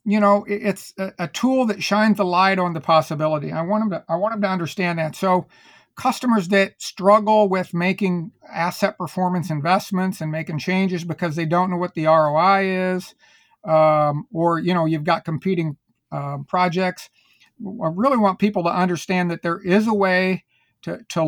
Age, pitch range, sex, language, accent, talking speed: 50-69, 165-195 Hz, male, English, American, 180 wpm